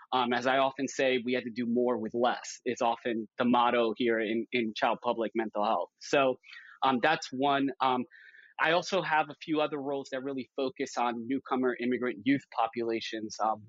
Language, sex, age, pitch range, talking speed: English, male, 20-39, 120-140 Hz, 195 wpm